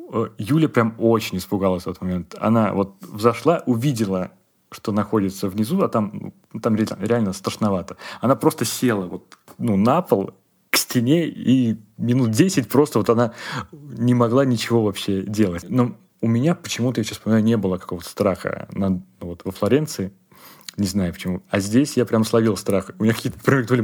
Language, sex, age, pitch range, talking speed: Russian, male, 30-49, 105-130 Hz, 165 wpm